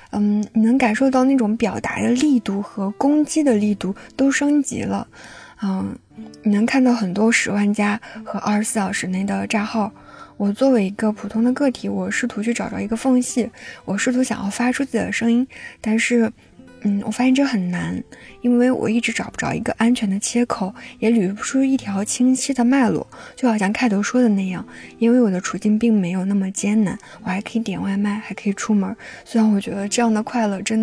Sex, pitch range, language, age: female, 200-240 Hz, Chinese, 20-39